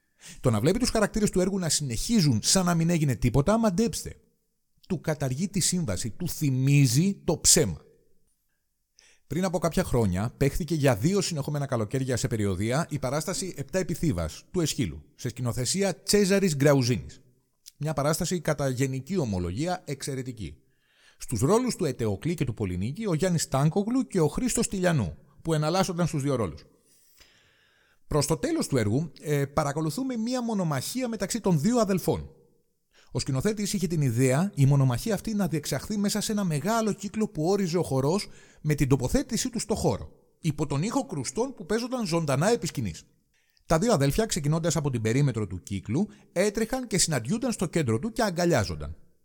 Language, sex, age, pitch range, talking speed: Greek, male, 40-59, 135-195 Hz, 160 wpm